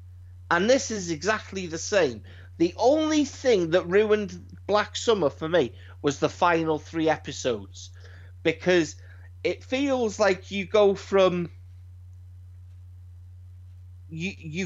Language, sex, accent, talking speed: English, male, British, 115 wpm